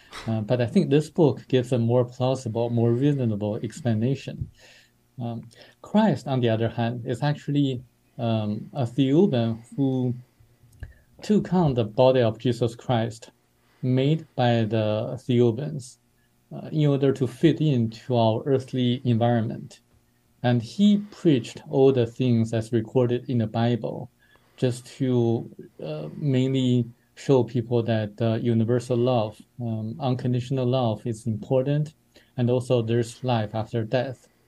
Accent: Japanese